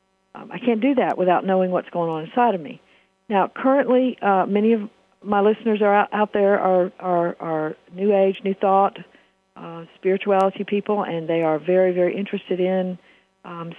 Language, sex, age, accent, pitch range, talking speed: English, female, 50-69, American, 170-205 Hz, 185 wpm